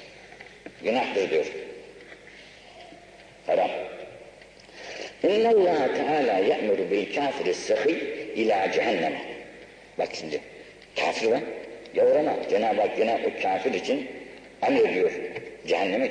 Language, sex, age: Turkish, male, 60-79